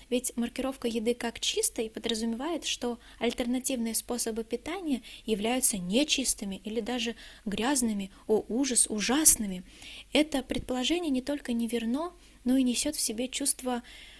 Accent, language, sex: native, Russian, female